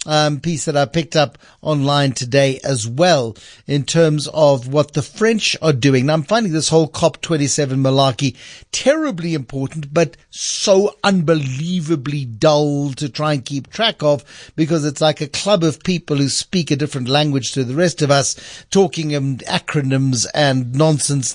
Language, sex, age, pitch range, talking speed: English, male, 60-79, 135-180 Hz, 165 wpm